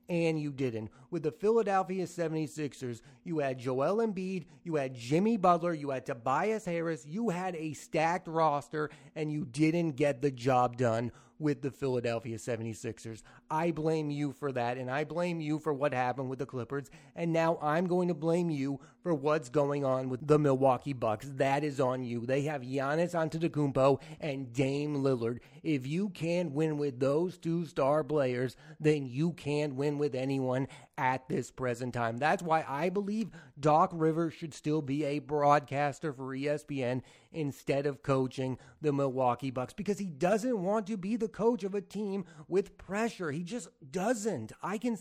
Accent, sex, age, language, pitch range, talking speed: American, male, 30-49, English, 140-180 Hz, 175 wpm